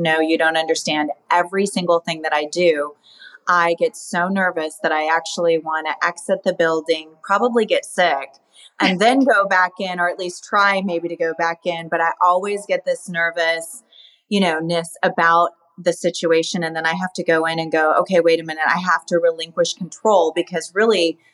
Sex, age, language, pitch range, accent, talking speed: female, 30-49, English, 165-195 Hz, American, 195 wpm